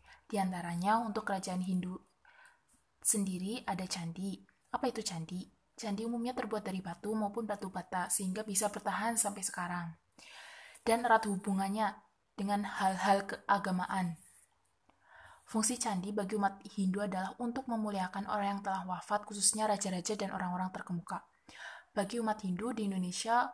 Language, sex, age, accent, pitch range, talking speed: Indonesian, female, 20-39, native, 185-215 Hz, 135 wpm